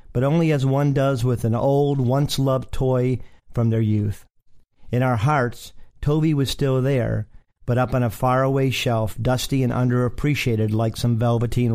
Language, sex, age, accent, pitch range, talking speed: English, male, 40-59, American, 115-140 Hz, 165 wpm